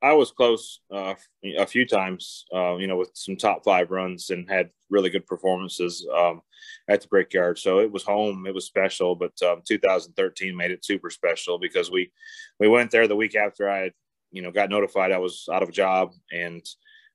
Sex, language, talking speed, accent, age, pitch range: male, English, 205 wpm, American, 30-49, 90-110 Hz